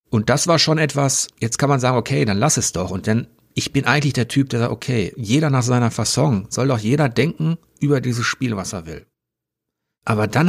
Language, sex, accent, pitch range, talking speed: German, male, German, 110-145 Hz, 230 wpm